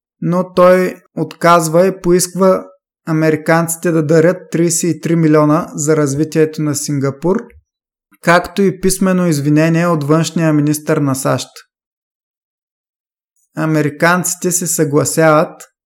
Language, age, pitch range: Bulgarian, 20-39, 150-180 Hz